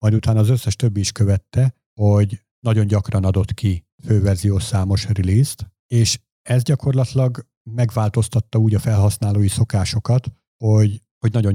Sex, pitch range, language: male, 100-115 Hz, Hungarian